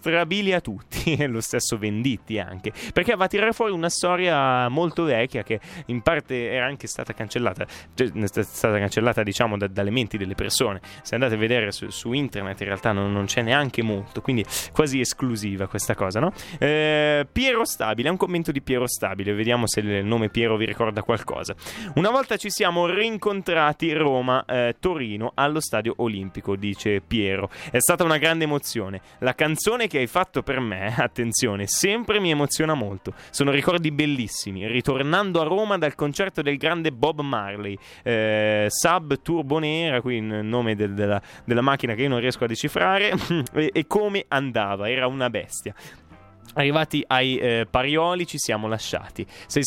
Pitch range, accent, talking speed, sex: 110-155 Hz, native, 170 wpm, male